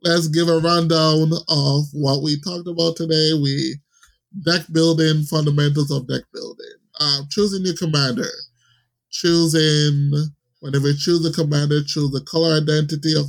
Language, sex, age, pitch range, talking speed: English, male, 20-39, 135-160 Hz, 145 wpm